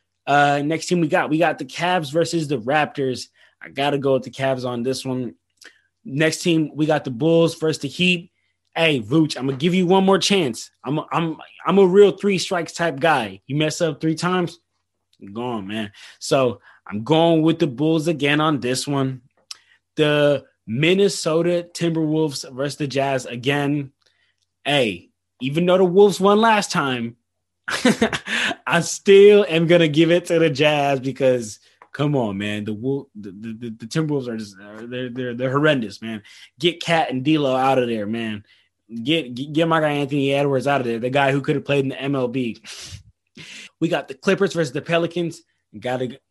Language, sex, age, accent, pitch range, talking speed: English, male, 20-39, American, 125-165 Hz, 185 wpm